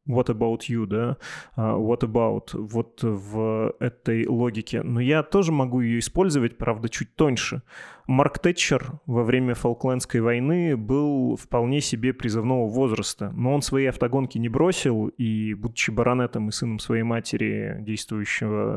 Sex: male